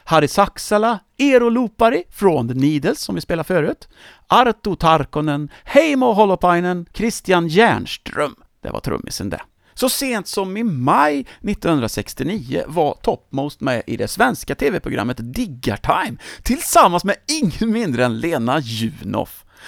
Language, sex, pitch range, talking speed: English, male, 150-230 Hz, 130 wpm